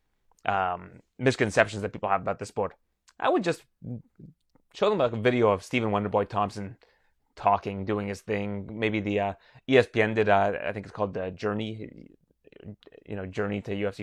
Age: 20-39